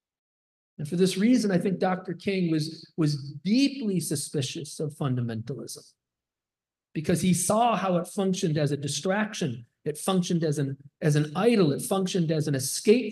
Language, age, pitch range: English, 40-59, 150-195 Hz